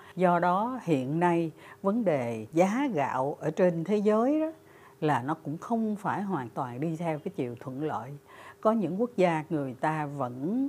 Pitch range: 145-205 Hz